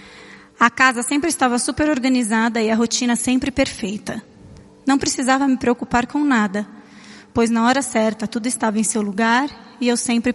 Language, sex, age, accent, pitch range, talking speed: English, female, 20-39, Brazilian, 220-265 Hz, 170 wpm